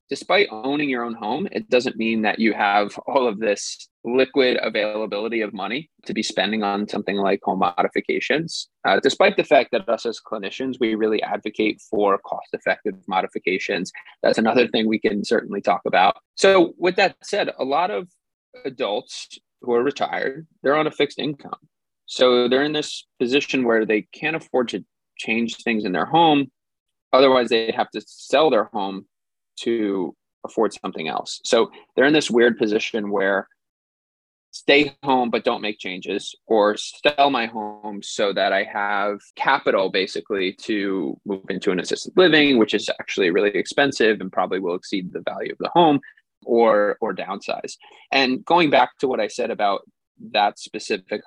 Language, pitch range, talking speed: English, 105-135 Hz, 170 wpm